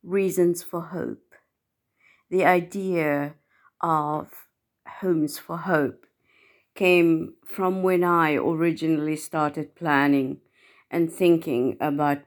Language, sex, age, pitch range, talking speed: English, female, 50-69, 150-175 Hz, 95 wpm